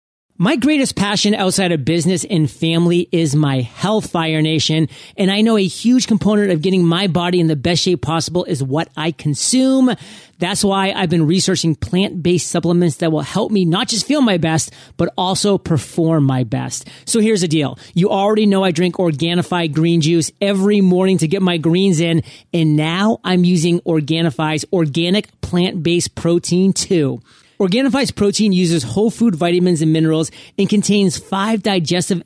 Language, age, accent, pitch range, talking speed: English, 30-49, American, 165-205 Hz, 175 wpm